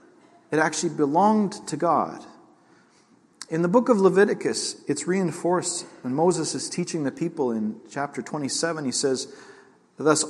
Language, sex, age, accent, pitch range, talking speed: English, male, 40-59, American, 135-205 Hz, 140 wpm